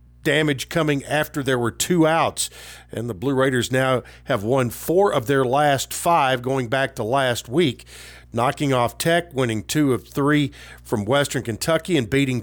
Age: 50-69